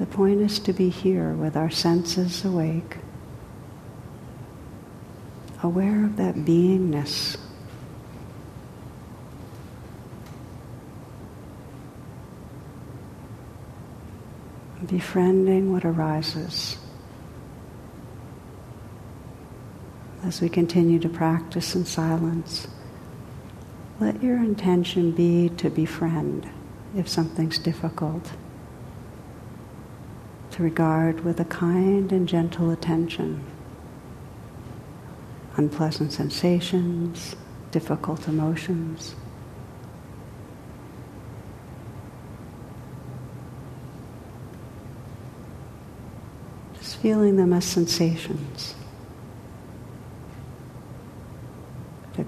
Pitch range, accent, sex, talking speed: 120-170 Hz, American, female, 55 wpm